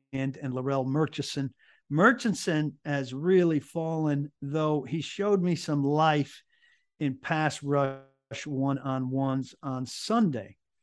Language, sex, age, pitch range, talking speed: English, male, 50-69, 135-155 Hz, 120 wpm